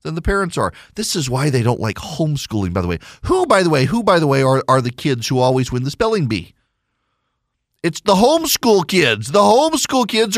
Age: 40-59